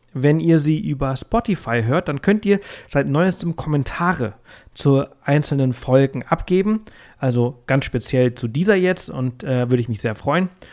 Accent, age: German, 40-59